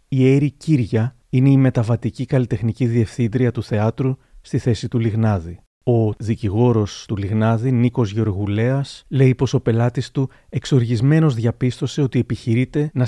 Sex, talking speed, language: male, 140 wpm, Greek